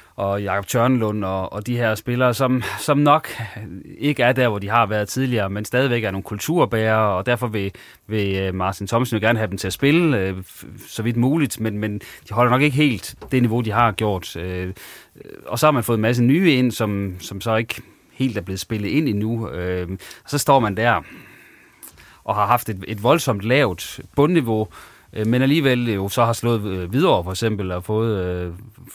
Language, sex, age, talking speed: Danish, male, 30-49, 200 wpm